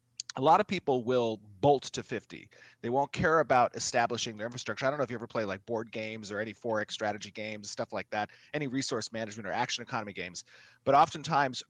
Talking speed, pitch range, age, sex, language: 215 wpm, 110-135 Hz, 30-49, male, English